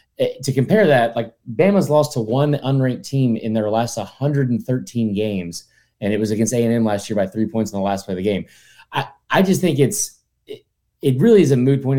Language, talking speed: English, 220 wpm